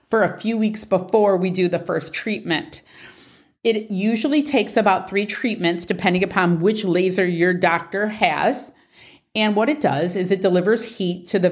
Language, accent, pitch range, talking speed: English, American, 175-215 Hz, 170 wpm